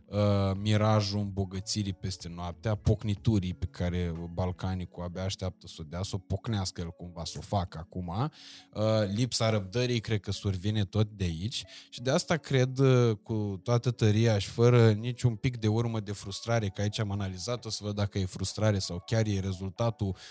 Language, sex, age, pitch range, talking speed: Romanian, male, 20-39, 95-120 Hz, 175 wpm